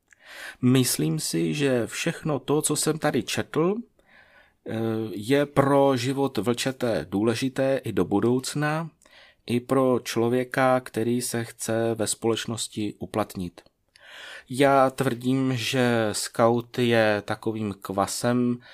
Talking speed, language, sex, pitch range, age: 105 wpm, Czech, male, 110-130 Hz, 30-49